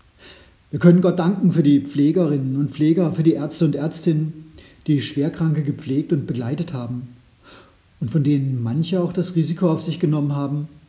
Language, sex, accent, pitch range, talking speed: German, male, German, 125-170 Hz, 170 wpm